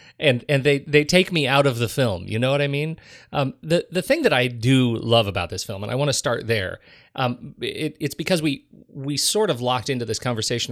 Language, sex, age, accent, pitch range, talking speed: English, male, 30-49, American, 110-140 Hz, 245 wpm